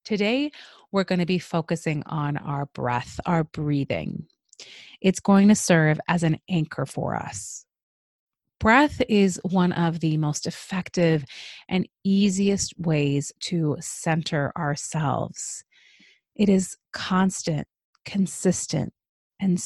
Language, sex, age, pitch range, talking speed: English, female, 30-49, 150-195 Hz, 115 wpm